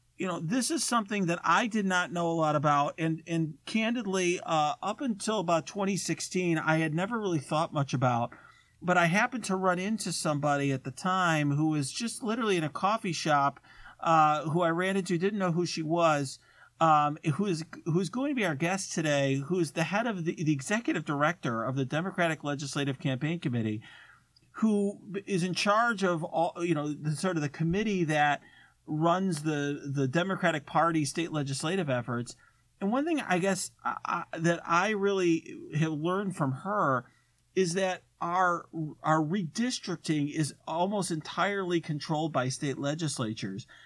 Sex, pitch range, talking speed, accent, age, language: male, 150-190 Hz, 175 wpm, American, 40-59, English